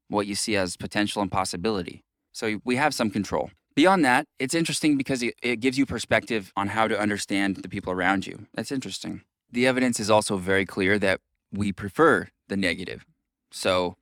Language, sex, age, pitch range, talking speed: English, male, 20-39, 95-125 Hz, 185 wpm